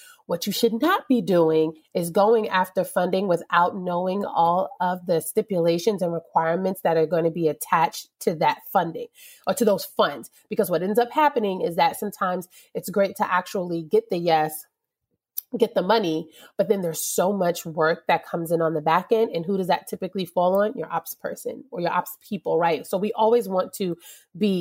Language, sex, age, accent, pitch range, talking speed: English, female, 30-49, American, 175-230 Hz, 200 wpm